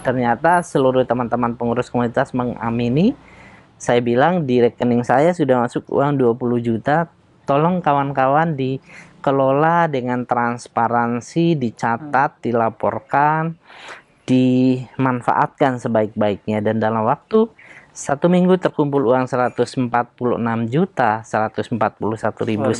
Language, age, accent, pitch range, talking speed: Indonesian, 20-39, native, 115-150 Hz, 90 wpm